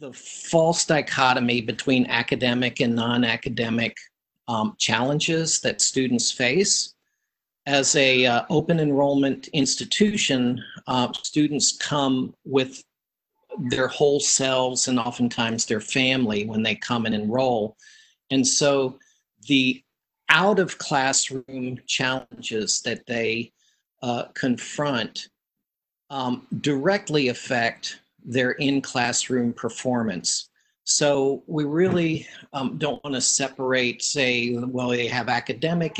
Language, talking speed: English, 105 wpm